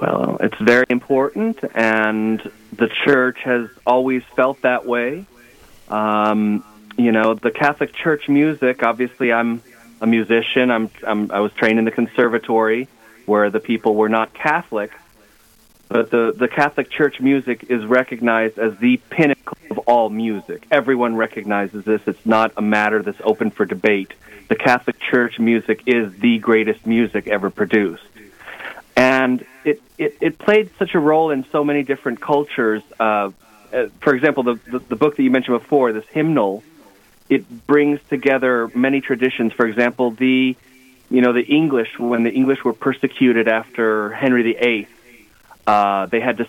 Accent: American